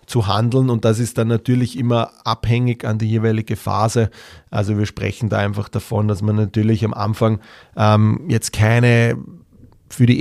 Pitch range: 110-125 Hz